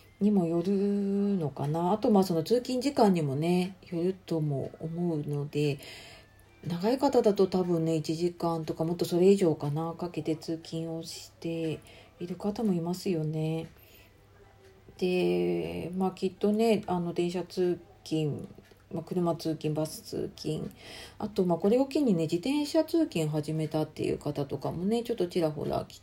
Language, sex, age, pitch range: Japanese, female, 40-59, 150-200 Hz